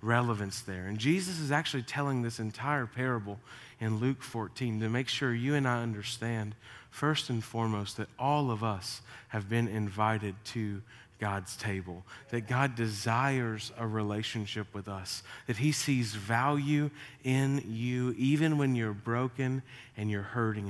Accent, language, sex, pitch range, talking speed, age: American, English, male, 115-130 Hz, 155 wpm, 30-49